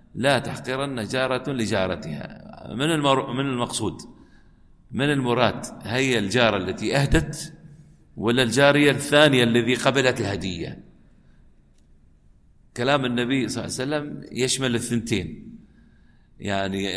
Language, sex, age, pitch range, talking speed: Arabic, male, 50-69, 115-145 Hz, 105 wpm